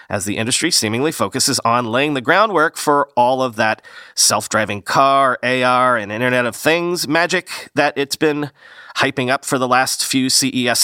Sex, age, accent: male, 40-59, American